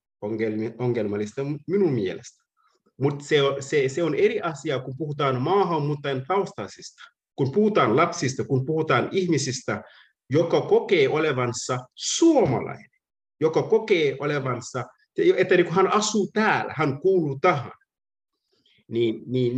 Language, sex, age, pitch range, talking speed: Finnish, male, 50-69, 130-215 Hz, 100 wpm